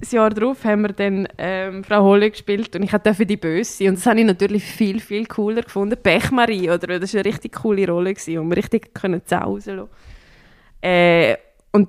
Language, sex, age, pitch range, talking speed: German, female, 20-39, 185-220 Hz, 195 wpm